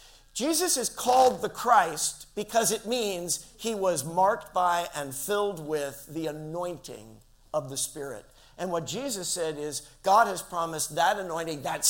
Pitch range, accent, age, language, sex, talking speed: 155-210 Hz, American, 50-69, English, male, 155 wpm